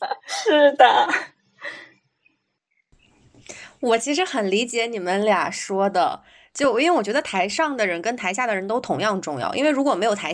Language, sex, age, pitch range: Chinese, female, 20-39, 180-245 Hz